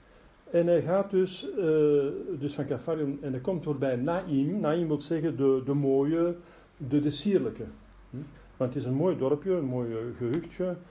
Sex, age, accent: male, 50-69, Dutch